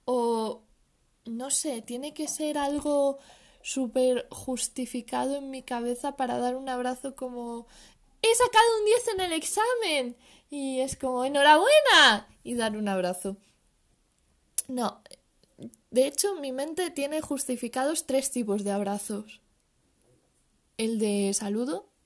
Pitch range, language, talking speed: 220-290 Hz, Spanish, 125 wpm